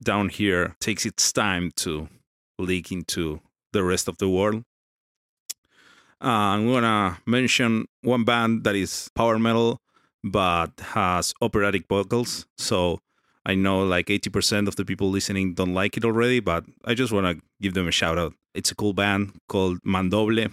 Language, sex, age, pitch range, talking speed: English, male, 30-49, 95-115 Hz, 165 wpm